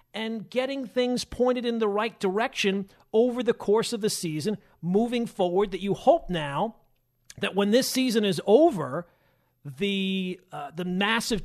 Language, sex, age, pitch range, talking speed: English, male, 40-59, 165-215 Hz, 155 wpm